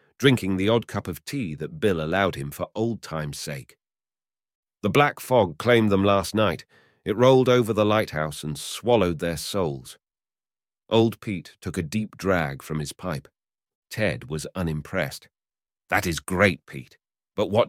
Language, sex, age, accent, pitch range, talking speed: English, male, 40-59, British, 80-125 Hz, 165 wpm